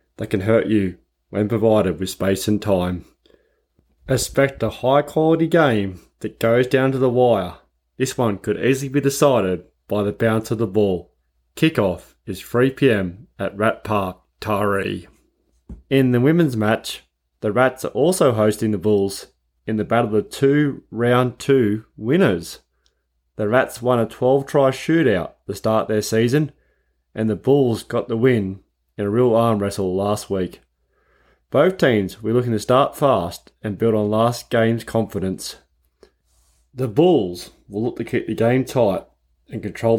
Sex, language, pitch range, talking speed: male, English, 95-120 Hz, 160 wpm